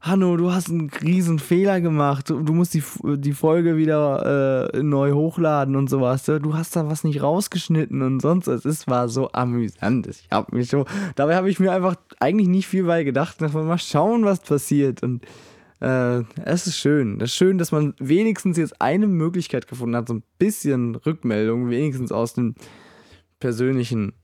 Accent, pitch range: German, 115-155 Hz